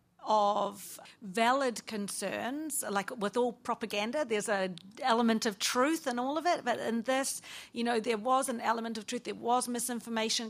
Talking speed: 170 wpm